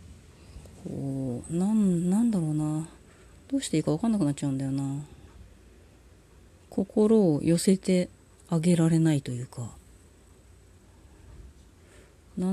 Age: 40-59